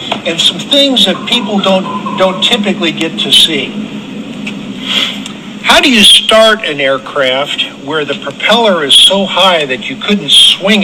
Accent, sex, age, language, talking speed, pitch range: American, male, 60-79, English, 150 wpm, 160-215 Hz